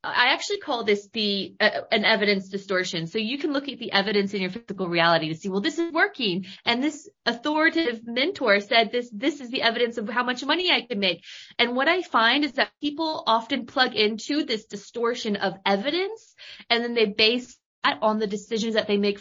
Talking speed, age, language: 210 wpm, 20-39, English